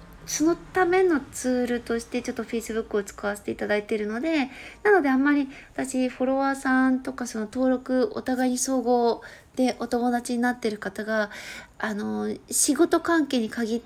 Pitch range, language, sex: 220-270 Hz, Japanese, female